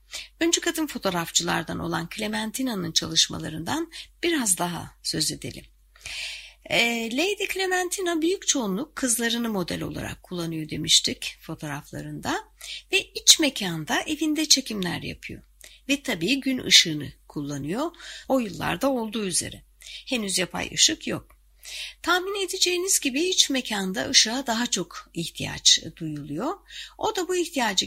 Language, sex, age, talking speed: Turkish, female, 60-79, 115 wpm